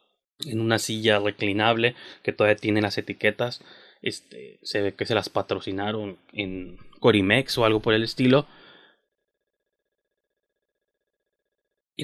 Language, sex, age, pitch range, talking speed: Spanish, male, 20-39, 115-175 Hz, 120 wpm